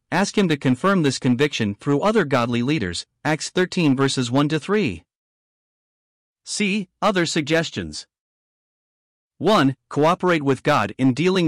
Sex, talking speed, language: male, 120 wpm, English